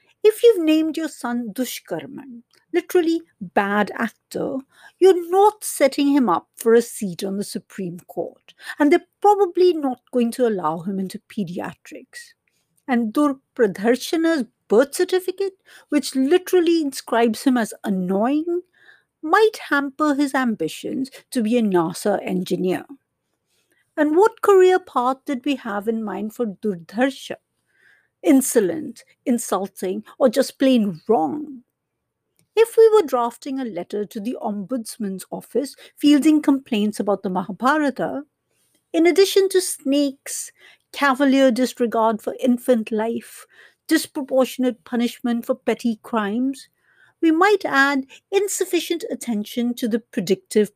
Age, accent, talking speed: 50-69, Indian, 125 wpm